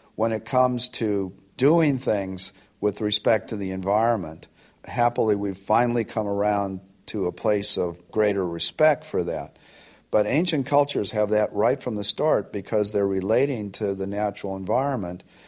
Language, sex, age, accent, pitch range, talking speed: English, male, 50-69, American, 100-120 Hz, 155 wpm